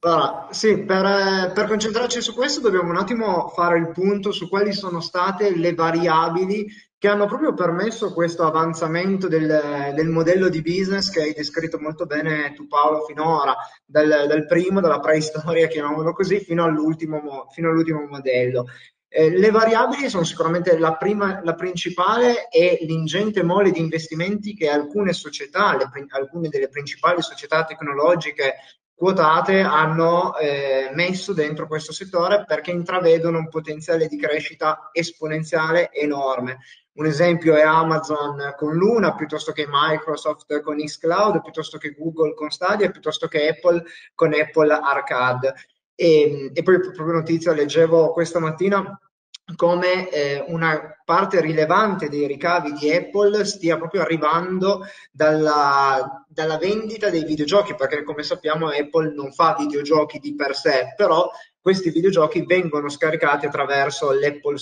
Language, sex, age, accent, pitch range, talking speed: Italian, male, 20-39, native, 150-185 Hz, 140 wpm